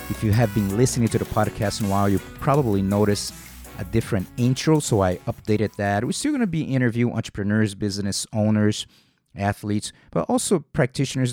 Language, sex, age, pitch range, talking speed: English, male, 30-49, 100-130 Hz, 180 wpm